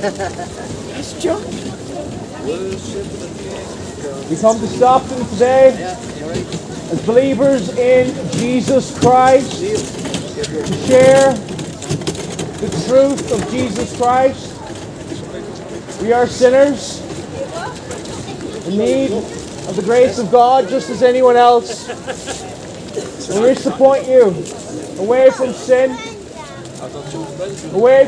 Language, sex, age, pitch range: English, male, 30-49, 240-265 Hz